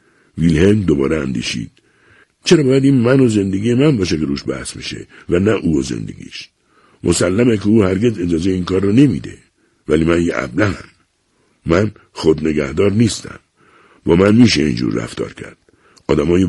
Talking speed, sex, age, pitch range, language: 155 wpm, male, 60-79, 90-120 Hz, English